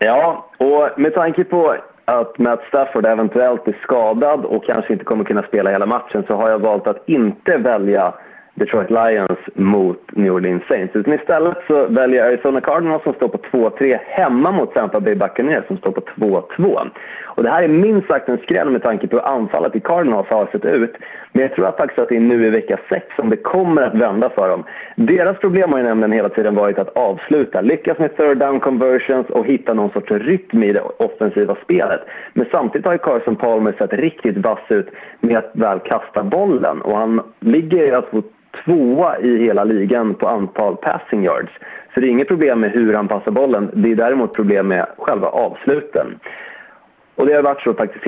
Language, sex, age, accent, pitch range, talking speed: Swedish, male, 30-49, native, 110-150 Hz, 205 wpm